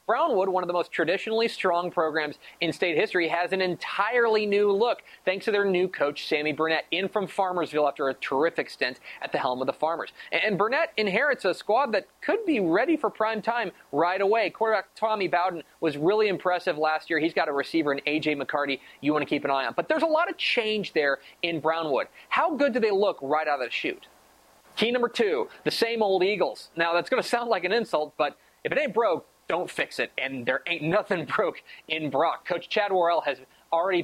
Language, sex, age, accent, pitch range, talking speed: English, male, 30-49, American, 145-205 Hz, 220 wpm